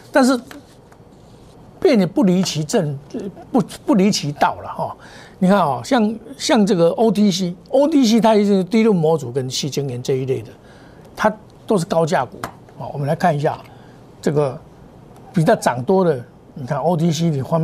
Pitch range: 145-205 Hz